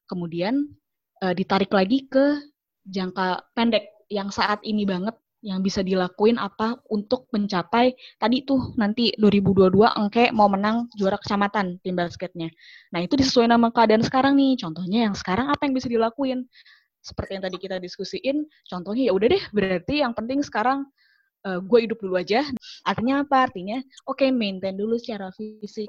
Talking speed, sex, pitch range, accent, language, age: 160 wpm, female, 180-235 Hz, native, Indonesian, 20-39